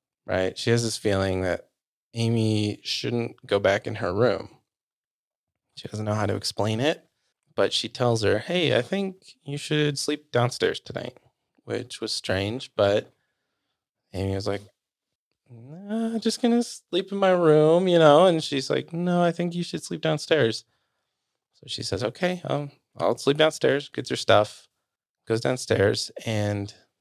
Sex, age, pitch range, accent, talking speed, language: male, 20-39, 105-135 Hz, American, 165 wpm, English